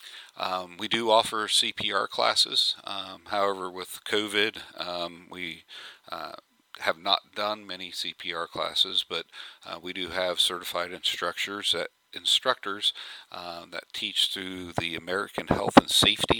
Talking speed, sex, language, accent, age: 130 wpm, male, English, American, 40-59